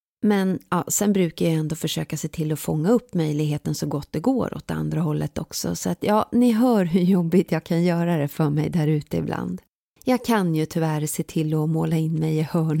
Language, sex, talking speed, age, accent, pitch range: Swedish, female, 235 wpm, 30-49, native, 155-215 Hz